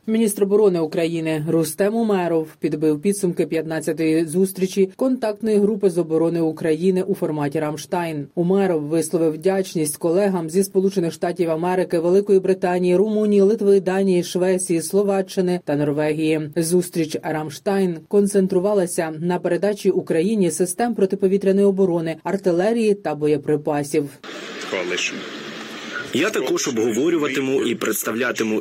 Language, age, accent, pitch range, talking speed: Ukrainian, 30-49, native, 155-195 Hz, 105 wpm